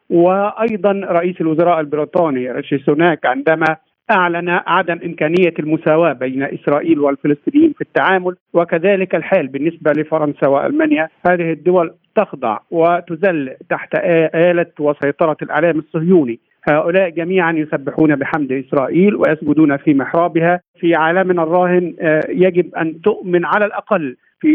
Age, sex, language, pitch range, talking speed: 50-69, male, Arabic, 150-180 Hz, 115 wpm